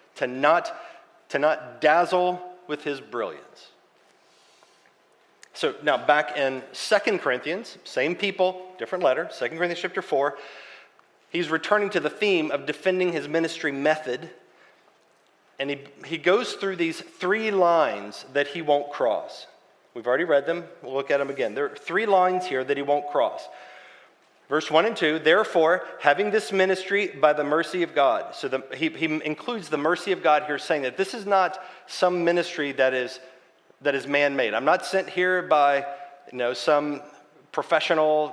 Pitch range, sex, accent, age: 145-180 Hz, male, American, 40-59